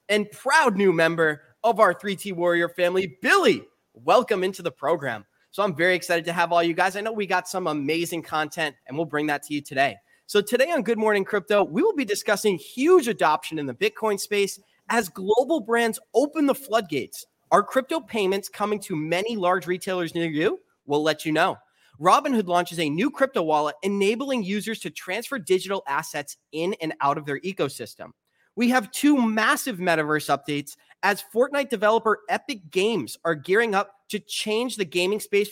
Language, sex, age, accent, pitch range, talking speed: English, male, 20-39, American, 160-225 Hz, 185 wpm